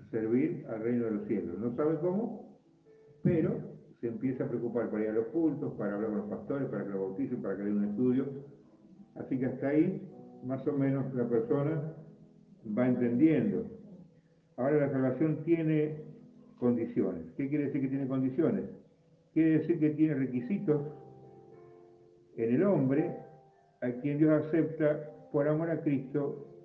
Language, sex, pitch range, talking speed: Spanish, male, 120-165 Hz, 160 wpm